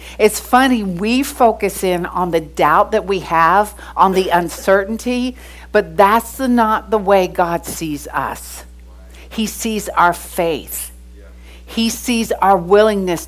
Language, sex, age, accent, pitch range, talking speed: English, female, 60-79, American, 130-205 Hz, 140 wpm